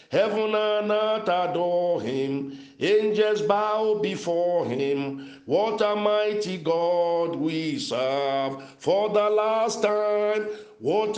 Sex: male